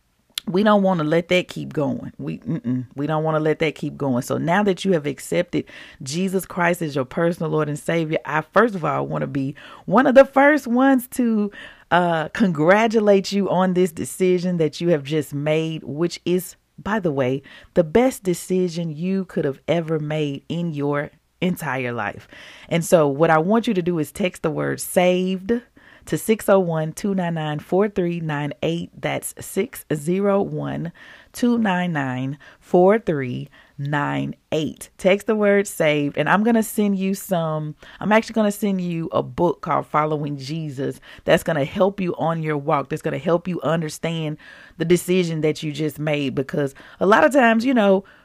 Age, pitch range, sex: 40-59, 150-190 Hz, female